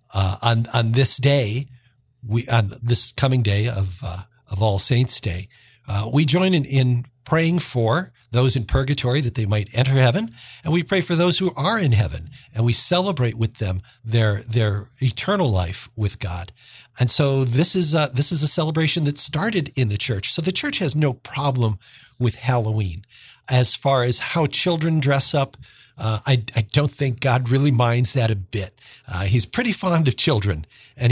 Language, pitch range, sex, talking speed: English, 115-145 Hz, male, 190 wpm